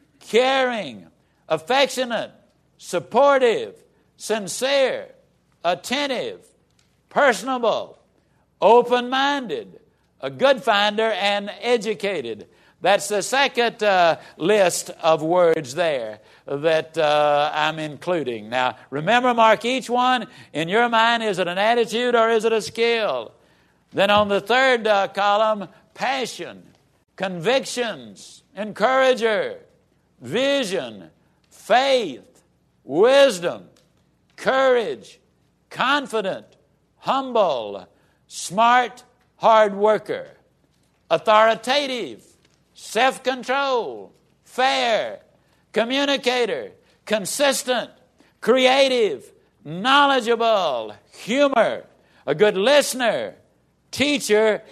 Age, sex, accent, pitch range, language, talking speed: 60-79, male, American, 200-275 Hz, English, 80 wpm